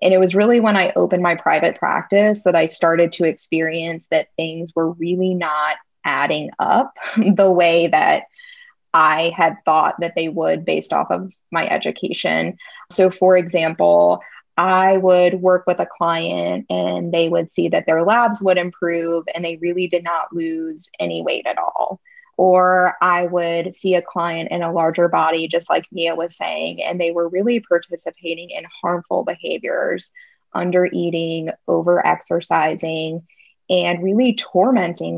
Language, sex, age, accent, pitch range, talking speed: English, female, 20-39, American, 165-185 Hz, 160 wpm